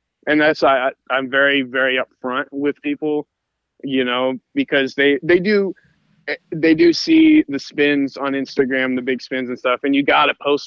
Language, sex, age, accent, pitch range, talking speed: English, male, 20-39, American, 120-140 Hz, 180 wpm